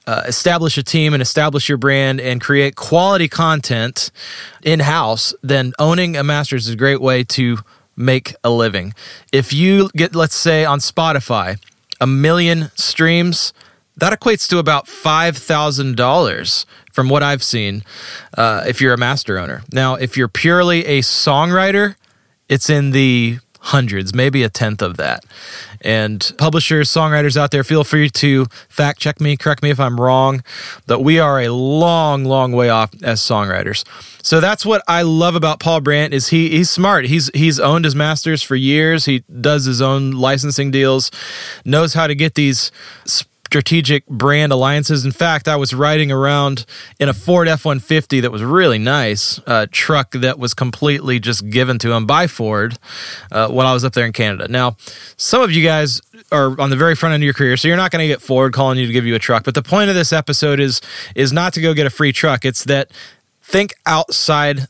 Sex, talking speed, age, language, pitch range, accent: male, 190 wpm, 30-49, English, 125-155 Hz, American